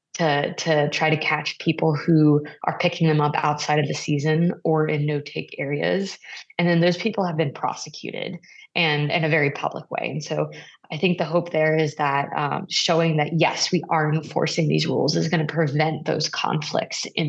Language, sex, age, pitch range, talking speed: English, female, 20-39, 155-175 Hz, 200 wpm